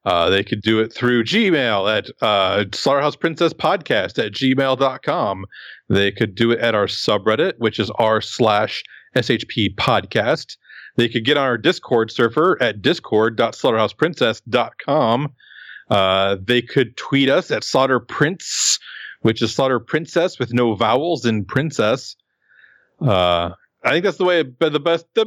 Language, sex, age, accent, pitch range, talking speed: English, male, 40-59, American, 115-140 Hz, 140 wpm